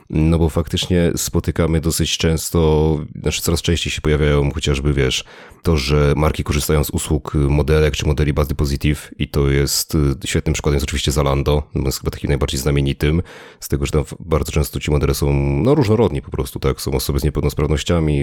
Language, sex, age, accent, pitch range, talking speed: Polish, male, 30-49, native, 70-80 Hz, 185 wpm